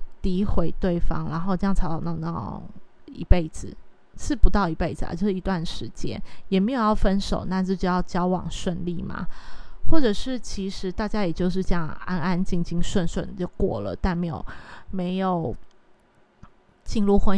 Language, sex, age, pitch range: Chinese, female, 20-39, 180-205 Hz